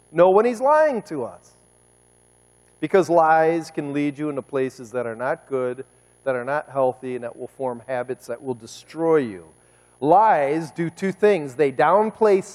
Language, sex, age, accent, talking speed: English, male, 40-59, American, 170 wpm